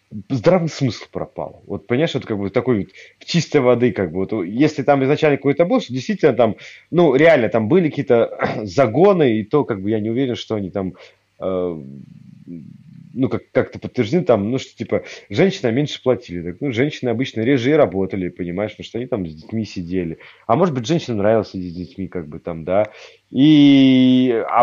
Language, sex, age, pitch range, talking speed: Russian, male, 30-49, 105-150 Hz, 190 wpm